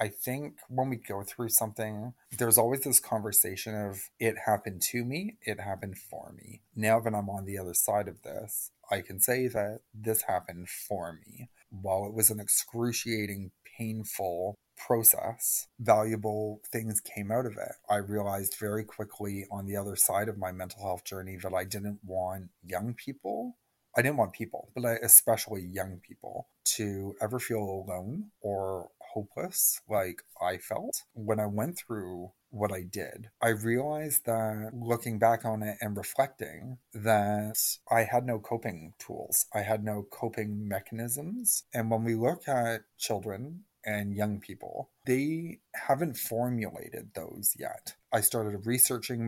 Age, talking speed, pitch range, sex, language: 30-49, 160 wpm, 100-115 Hz, male, English